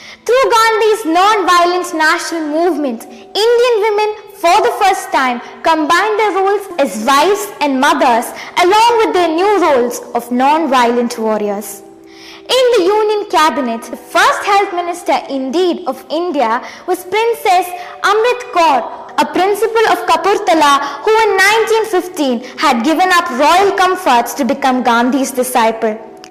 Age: 20-39